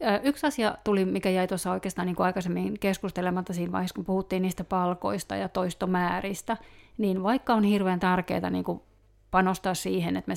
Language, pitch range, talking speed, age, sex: Finnish, 180-205 Hz, 160 wpm, 30-49, female